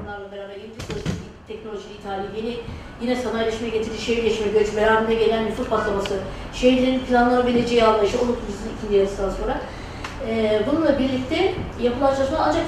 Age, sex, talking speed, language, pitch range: 30-49, female, 130 wpm, Turkish, 205-260 Hz